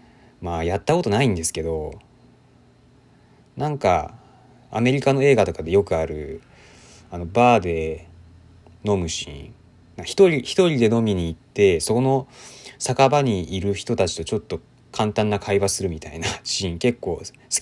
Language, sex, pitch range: Japanese, male, 85-125 Hz